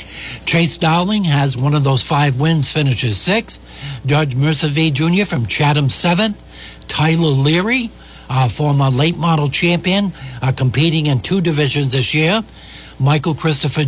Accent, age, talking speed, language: American, 60-79, 140 wpm, English